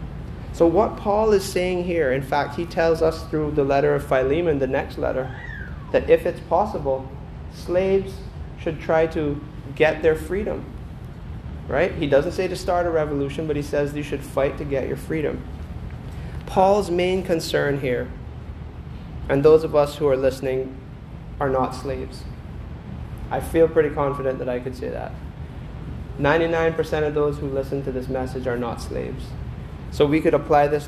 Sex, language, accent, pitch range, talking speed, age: male, English, American, 130-160 Hz, 170 wpm, 30-49